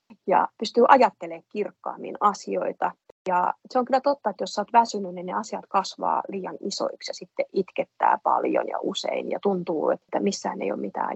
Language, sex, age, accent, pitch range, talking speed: Finnish, female, 30-49, native, 195-255 Hz, 175 wpm